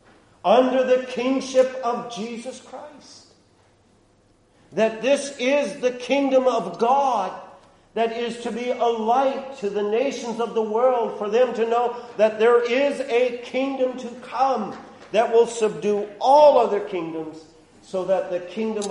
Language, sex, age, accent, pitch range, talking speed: English, male, 50-69, American, 135-225 Hz, 145 wpm